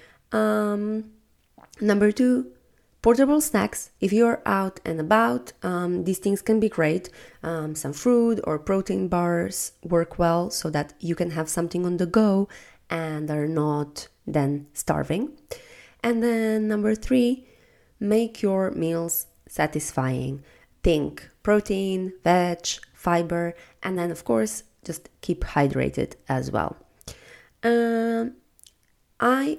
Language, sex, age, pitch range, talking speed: English, female, 20-39, 160-210 Hz, 125 wpm